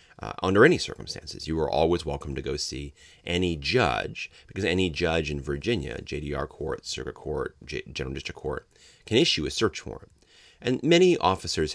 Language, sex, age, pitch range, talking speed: English, male, 30-49, 75-95 Hz, 175 wpm